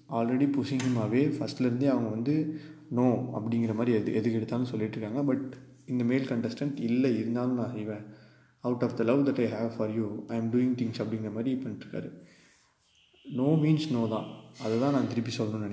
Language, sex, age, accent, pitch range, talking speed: Tamil, male, 20-39, native, 115-130 Hz, 170 wpm